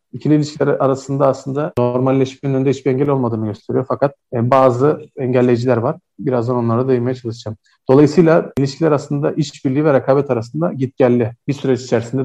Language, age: Turkish, 40-59